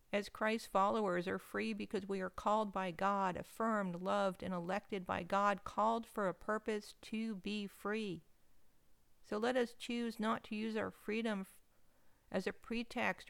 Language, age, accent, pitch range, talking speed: English, 50-69, American, 185-220 Hz, 160 wpm